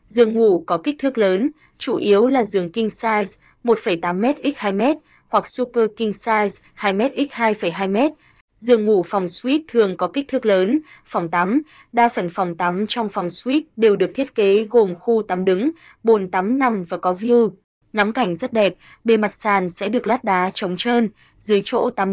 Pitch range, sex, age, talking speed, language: 195-235 Hz, female, 20-39, 190 wpm, Vietnamese